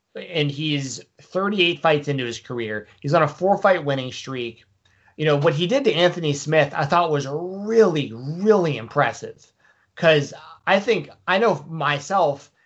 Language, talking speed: English, 160 wpm